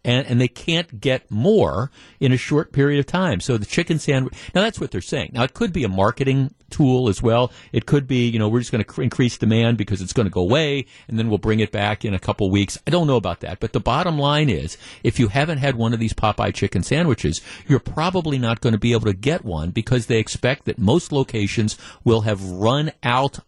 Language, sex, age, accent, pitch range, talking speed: English, male, 50-69, American, 110-145 Hz, 250 wpm